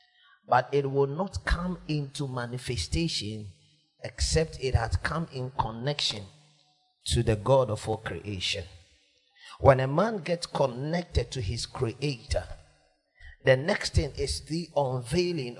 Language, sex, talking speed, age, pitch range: English, male, 125 wpm, 40-59, 105-160 Hz